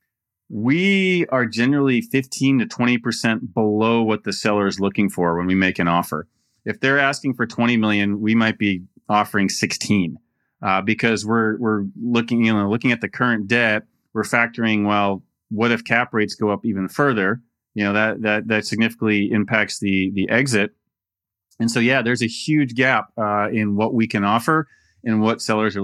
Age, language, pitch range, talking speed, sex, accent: 30-49, English, 105-130 Hz, 185 wpm, male, American